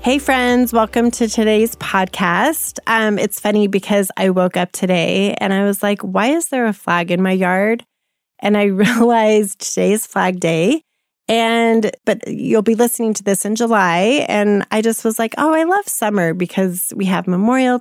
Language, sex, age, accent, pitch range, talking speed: English, female, 30-49, American, 185-230 Hz, 180 wpm